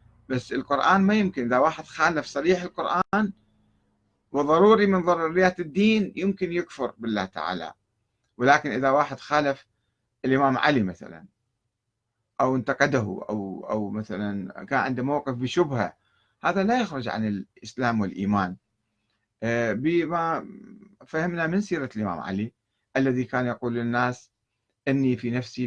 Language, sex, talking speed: Arabic, male, 120 wpm